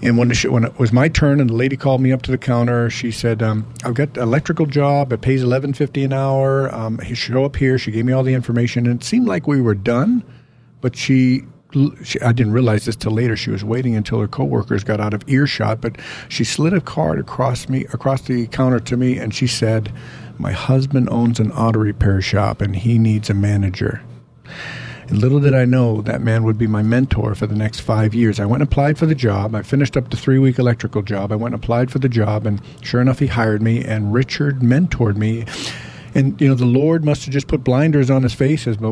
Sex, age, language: male, 50-69, English